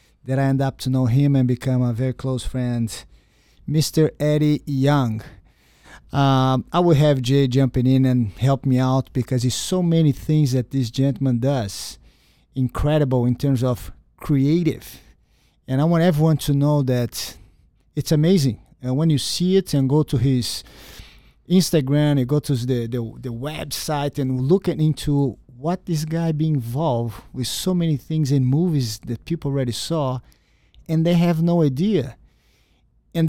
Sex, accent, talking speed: male, Brazilian, 165 wpm